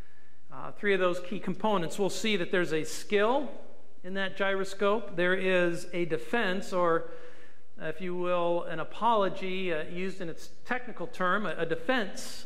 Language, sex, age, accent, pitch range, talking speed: English, male, 50-69, American, 160-200 Hz, 165 wpm